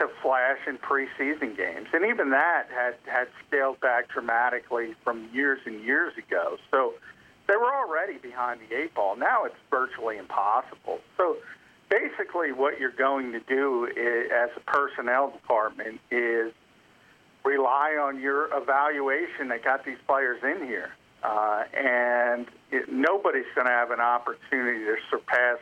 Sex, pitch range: male, 120-140 Hz